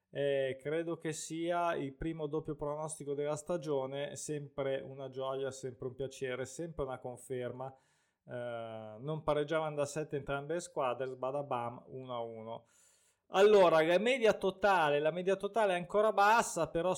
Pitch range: 130-170 Hz